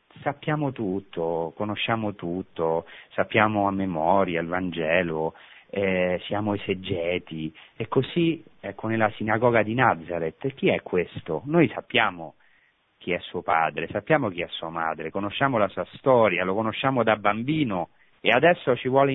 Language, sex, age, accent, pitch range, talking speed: Italian, male, 40-59, native, 100-155 Hz, 145 wpm